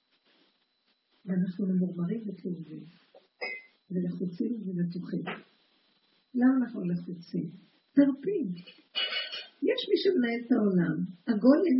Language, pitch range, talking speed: Hebrew, 185-255 Hz, 75 wpm